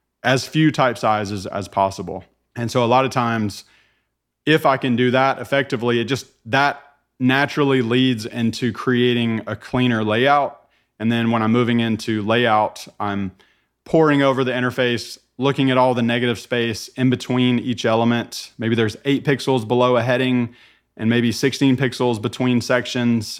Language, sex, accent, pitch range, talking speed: English, male, American, 115-130 Hz, 160 wpm